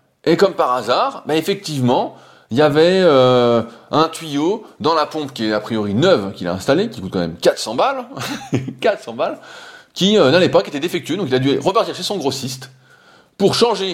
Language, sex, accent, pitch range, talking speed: French, male, French, 125-180 Hz, 205 wpm